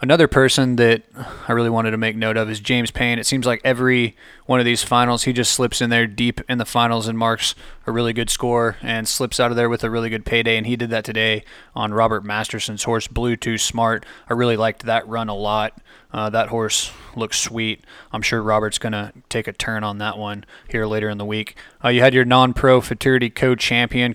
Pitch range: 110-120 Hz